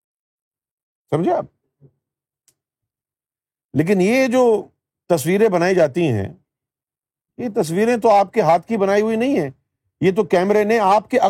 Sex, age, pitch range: male, 50-69, 140-185 Hz